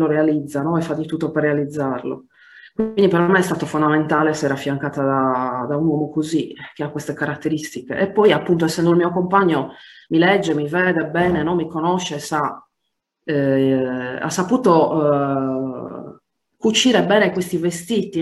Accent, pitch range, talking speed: native, 145-180 Hz, 165 wpm